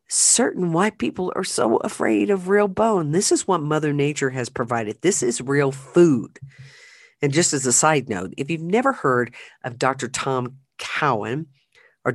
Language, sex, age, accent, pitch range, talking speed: English, female, 50-69, American, 130-175 Hz, 175 wpm